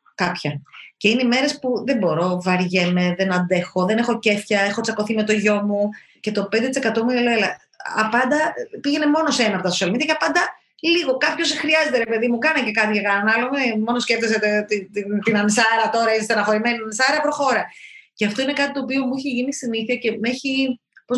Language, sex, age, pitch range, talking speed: Greek, female, 20-39, 185-240 Hz, 200 wpm